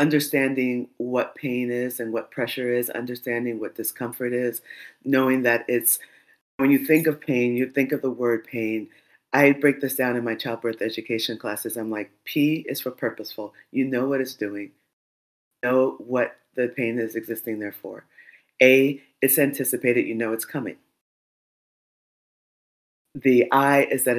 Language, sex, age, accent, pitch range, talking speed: English, female, 40-59, American, 120-155 Hz, 160 wpm